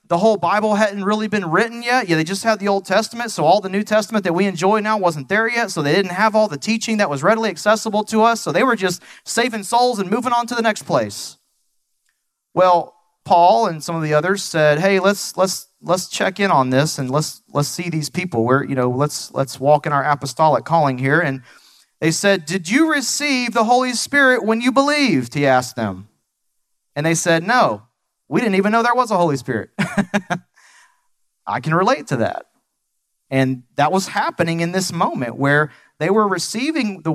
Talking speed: 210 wpm